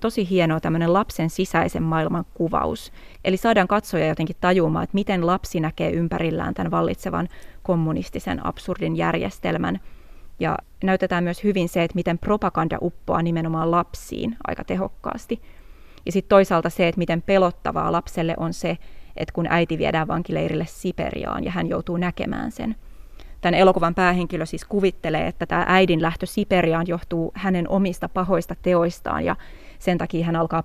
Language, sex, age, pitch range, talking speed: Finnish, female, 20-39, 165-190 Hz, 150 wpm